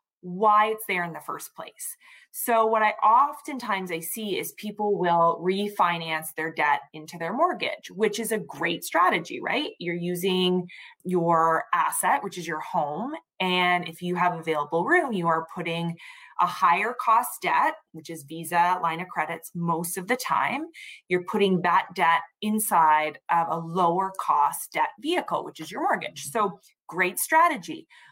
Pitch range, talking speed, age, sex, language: 175-230 Hz, 165 wpm, 20-39, female, English